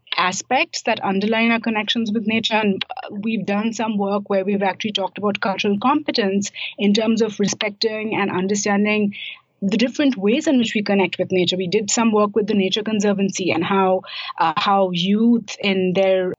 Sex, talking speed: female, 180 wpm